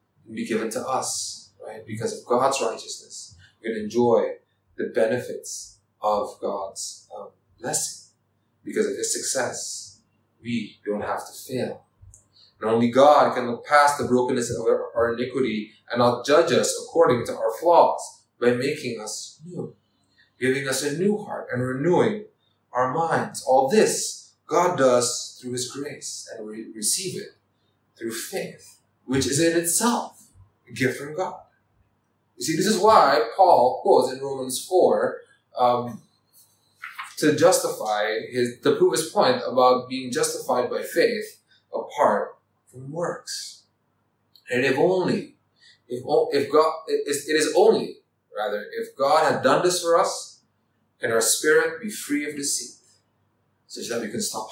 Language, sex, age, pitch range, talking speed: English, male, 30-49, 115-180 Hz, 150 wpm